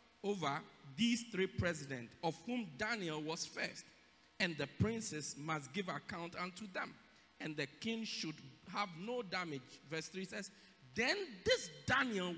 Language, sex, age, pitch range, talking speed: English, male, 50-69, 145-225 Hz, 145 wpm